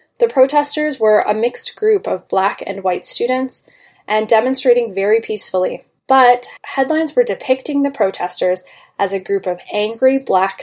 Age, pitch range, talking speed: 10-29, 205-290 Hz, 150 wpm